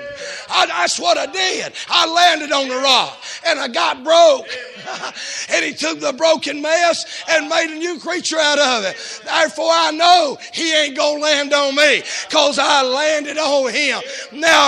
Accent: American